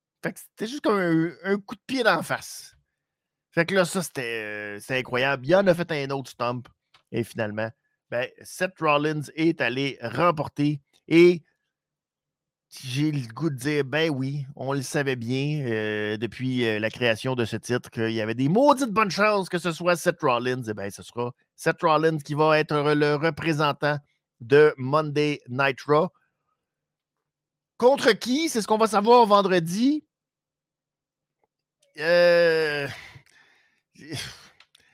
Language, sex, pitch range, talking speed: French, male, 125-170 Hz, 160 wpm